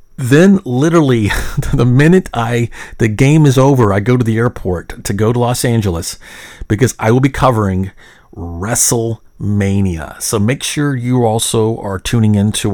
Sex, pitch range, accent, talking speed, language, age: male, 95-115 Hz, American, 155 wpm, English, 40-59